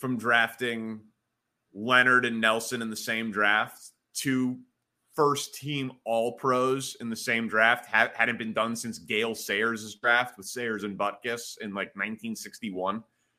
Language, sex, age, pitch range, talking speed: English, male, 30-49, 115-140 Hz, 150 wpm